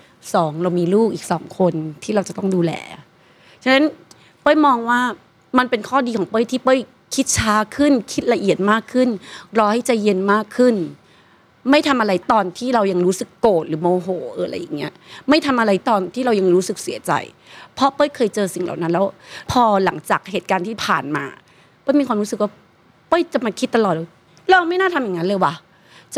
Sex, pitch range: female, 190-260 Hz